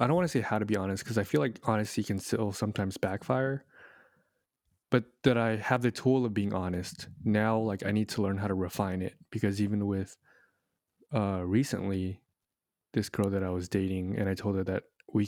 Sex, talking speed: male, 210 wpm